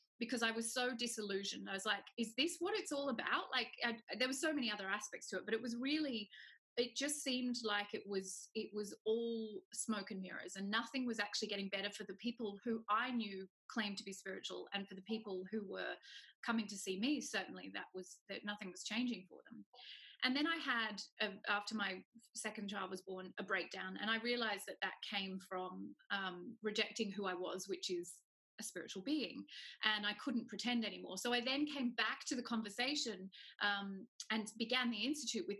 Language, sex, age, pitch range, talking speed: English, female, 30-49, 200-240 Hz, 205 wpm